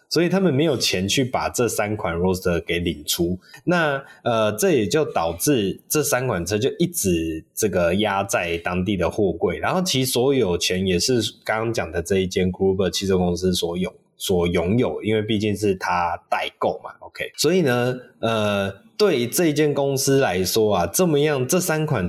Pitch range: 95-135 Hz